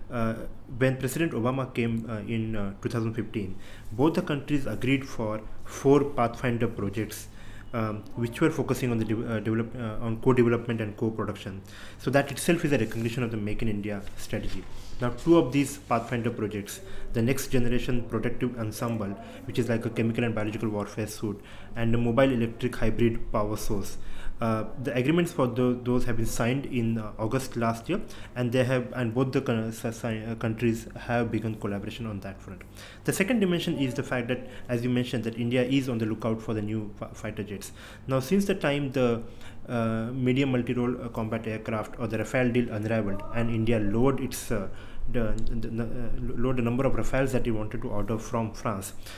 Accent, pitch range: Indian, 110-125 Hz